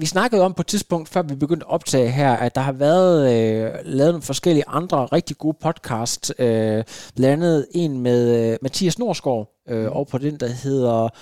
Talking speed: 200 wpm